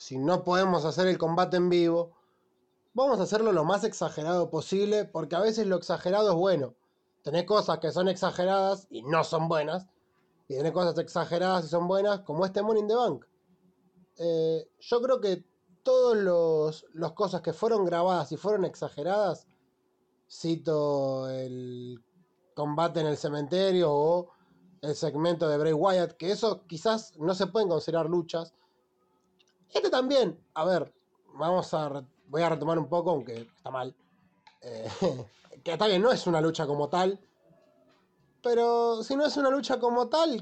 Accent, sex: Argentinian, male